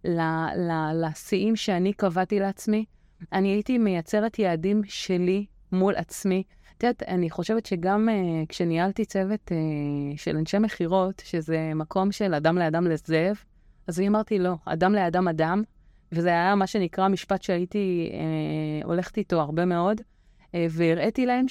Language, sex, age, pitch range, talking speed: Hebrew, female, 30-49, 170-205 Hz, 145 wpm